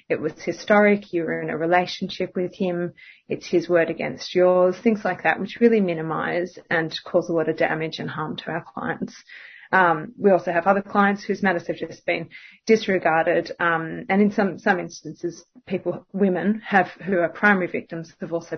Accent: Australian